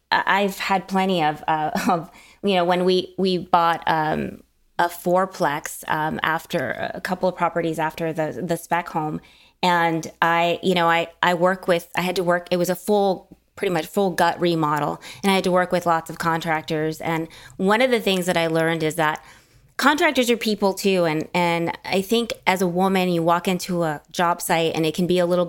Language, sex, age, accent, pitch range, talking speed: English, female, 20-39, American, 165-190 Hz, 210 wpm